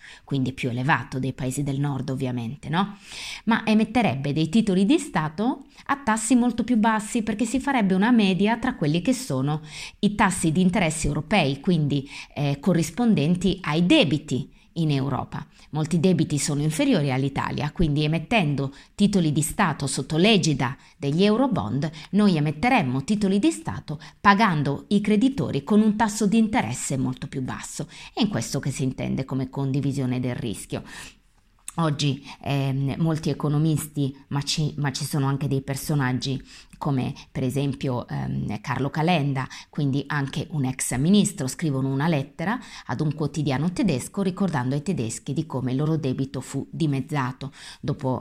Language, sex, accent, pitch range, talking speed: Italian, female, native, 135-185 Hz, 150 wpm